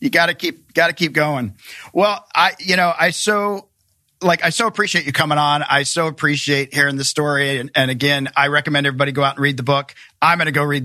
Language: English